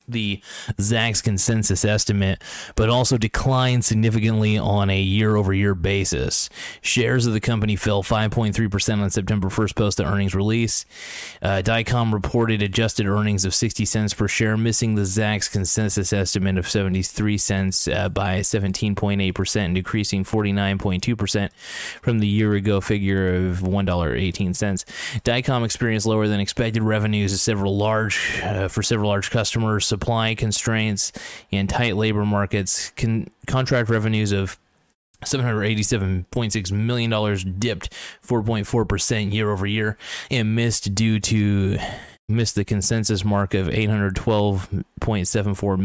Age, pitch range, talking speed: 20-39, 95-110 Hz, 115 wpm